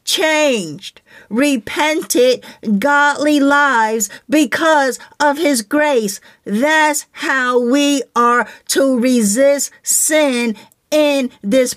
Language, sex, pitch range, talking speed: English, female, 225-285 Hz, 85 wpm